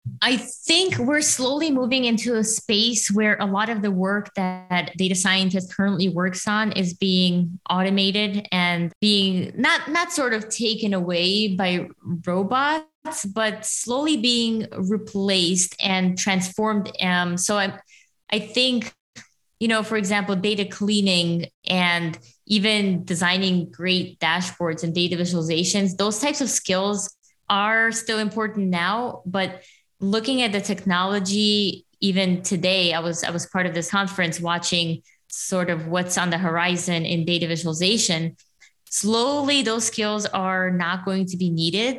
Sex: female